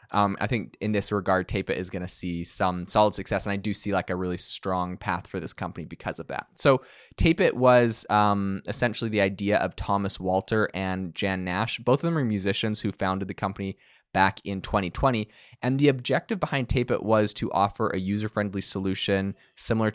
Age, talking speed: 20-39, 210 wpm